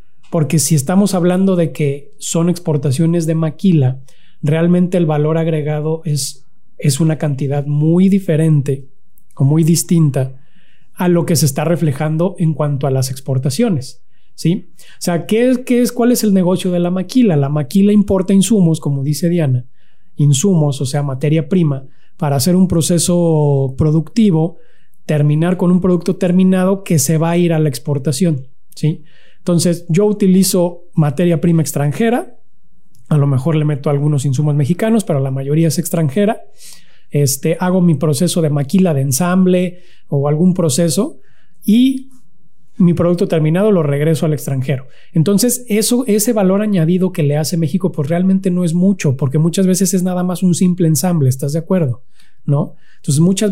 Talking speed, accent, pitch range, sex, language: 160 wpm, Mexican, 150-185 Hz, male, Spanish